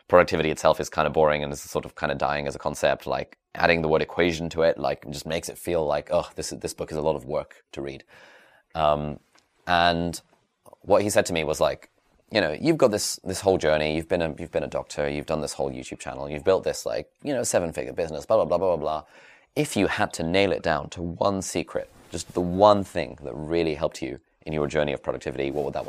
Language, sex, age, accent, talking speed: English, male, 20-39, British, 255 wpm